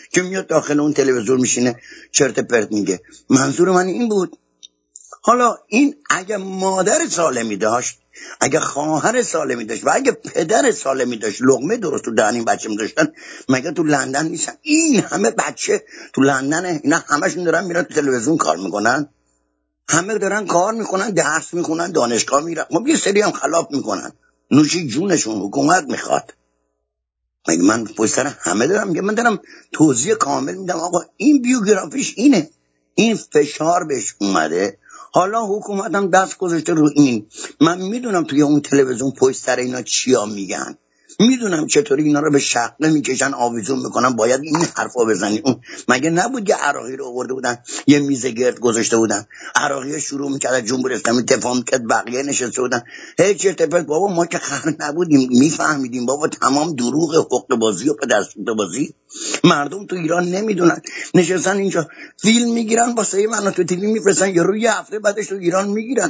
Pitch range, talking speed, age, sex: 130-205 Hz, 155 wpm, 60-79, male